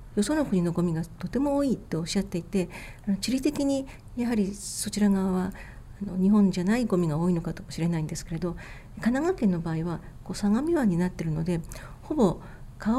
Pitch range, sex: 170-225 Hz, female